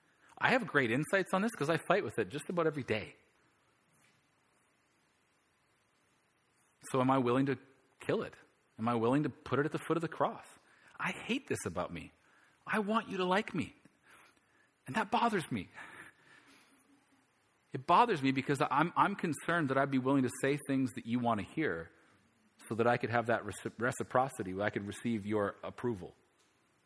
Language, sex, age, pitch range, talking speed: English, male, 40-59, 115-150 Hz, 180 wpm